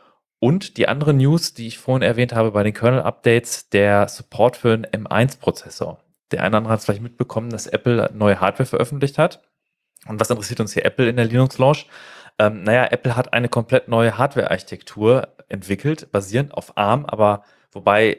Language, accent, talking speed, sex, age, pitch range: German, German, 175 wpm, male, 30-49, 105-130 Hz